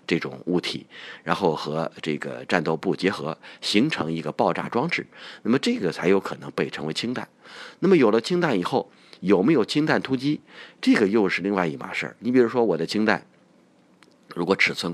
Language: Chinese